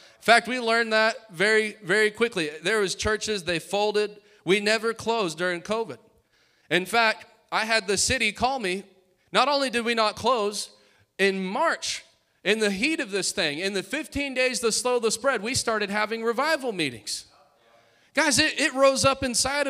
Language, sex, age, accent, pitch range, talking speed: English, male, 30-49, American, 185-260 Hz, 180 wpm